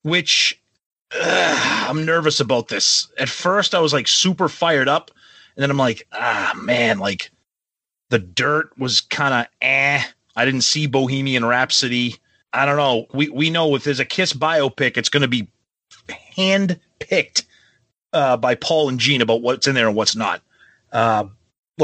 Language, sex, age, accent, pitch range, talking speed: English, male, 30-49, American, 120-165 Hz, 170 wpm